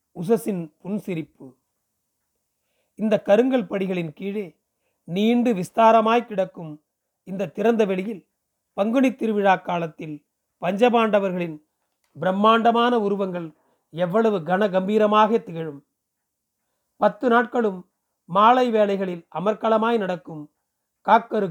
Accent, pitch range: native, 180-220 Hz